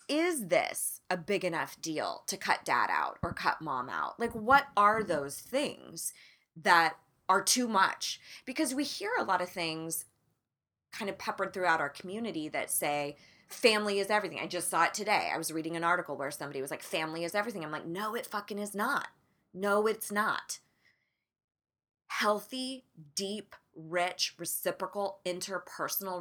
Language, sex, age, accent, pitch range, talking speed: English, female, 20-39, American, 160-225 Hz, 165 wpm